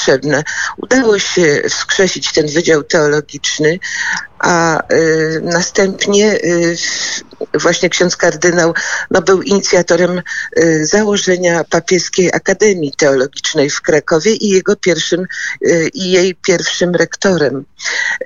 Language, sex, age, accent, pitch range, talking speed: Polish, female, 50-69, native, 160-185 Hz, 90 wpm